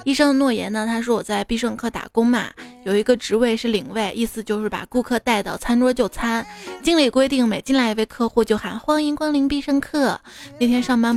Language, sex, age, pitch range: Chinese, female, 20-39, 215-255 Hz